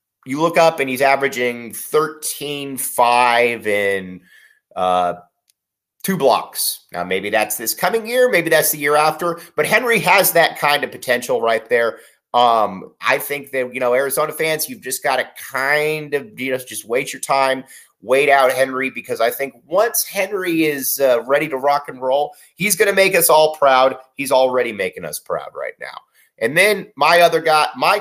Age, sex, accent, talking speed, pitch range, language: 30-49, male, American, 185 wpm, 130-190 Hz, English